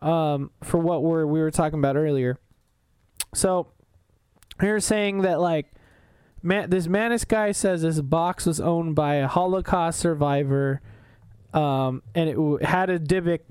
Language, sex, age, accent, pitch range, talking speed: English, male, 20-39, American, 145-185 Hz, 155 wpm